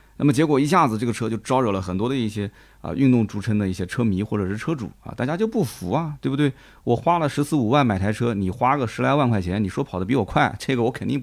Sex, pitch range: male, 100-140 Hz